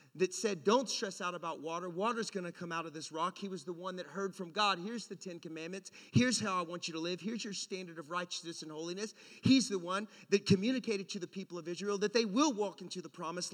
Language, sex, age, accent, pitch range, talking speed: English, male, 40-59, American, 165-215 Hz, 255 wpm